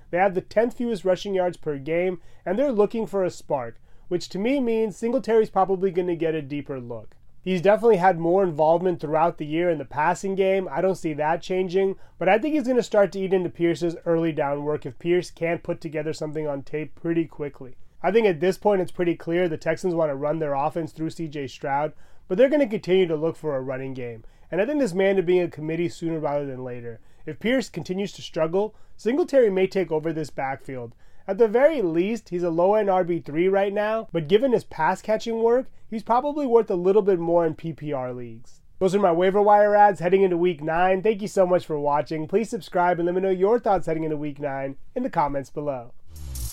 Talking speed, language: 230 wpm, English